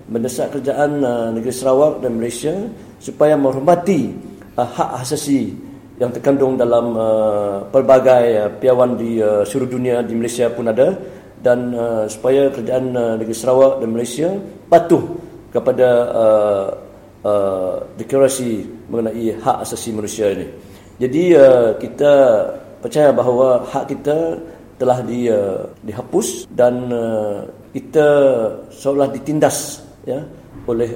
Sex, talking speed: male, 125 wpm